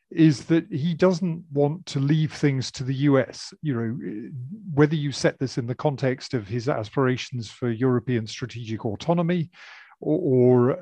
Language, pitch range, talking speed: English, 120-155 Hz, 155 wpm